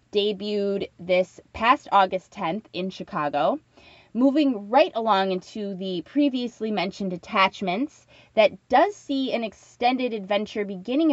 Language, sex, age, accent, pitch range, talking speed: English, female, 20-39, American, 180-220 Hz, 120 wpm